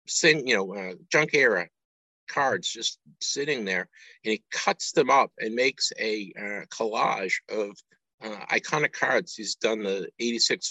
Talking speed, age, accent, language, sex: 155 wpm, 50-69, American, English, male